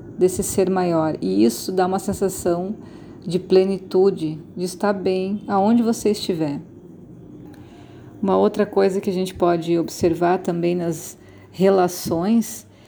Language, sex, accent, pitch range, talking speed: Portuguese, female, Brazilian, 175-205 Hz, 125 wpm